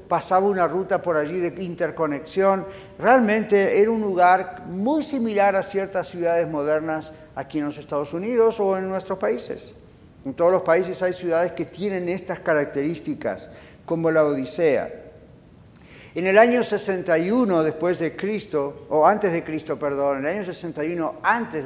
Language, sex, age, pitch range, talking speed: Spanish, male, 50-69, 150-195 Hz, 155 wpm